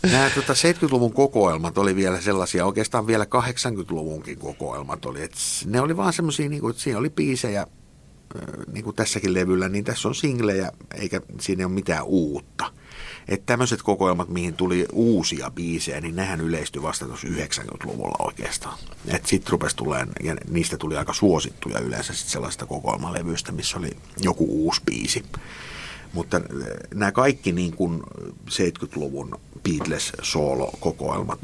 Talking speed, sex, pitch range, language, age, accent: 140 wpm, male, 90-120 Hz, Finnish, 50-69, native